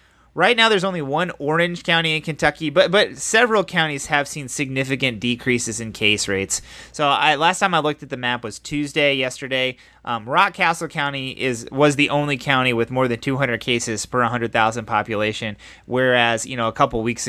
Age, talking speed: 30-49, 185 wpm